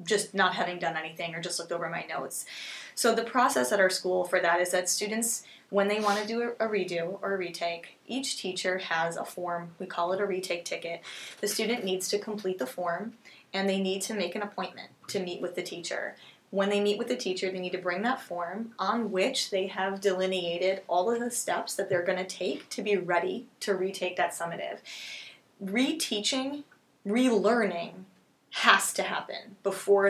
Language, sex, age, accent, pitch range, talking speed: English, female, 20-39, American, 180-210 Hz, 200 wpm